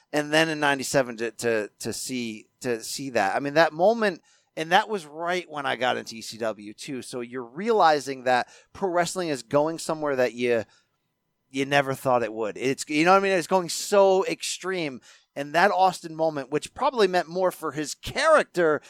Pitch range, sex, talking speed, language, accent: 130-185 Hz, male, 195 wpm, English, American